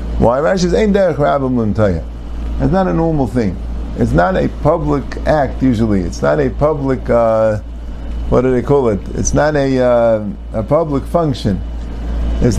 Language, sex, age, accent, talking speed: English, male, 50-69, American, 165 wpm